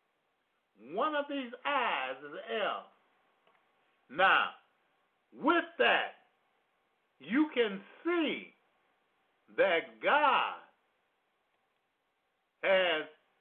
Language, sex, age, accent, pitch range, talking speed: English, male, 50-69, American, 190-280 Hz, 70 wpm